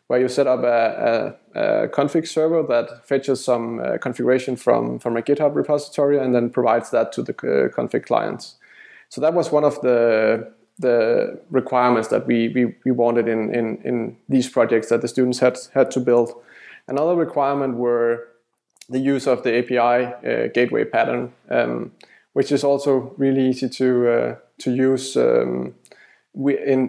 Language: English